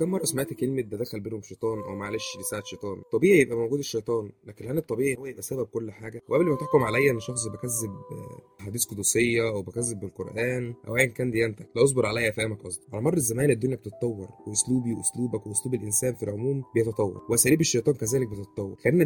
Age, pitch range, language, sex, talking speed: 20-39, 105-130 Hz, Arabic, male, 200 wpm